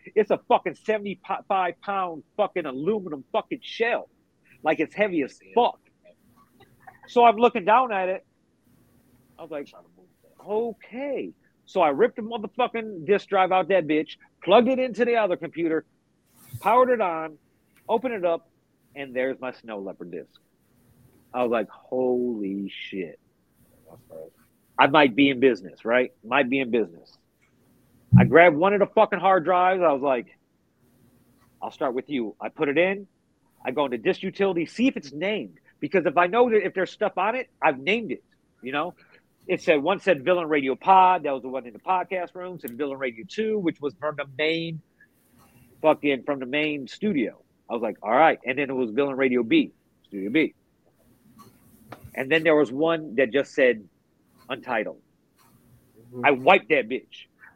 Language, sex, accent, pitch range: English, male, American, 130-195 Hz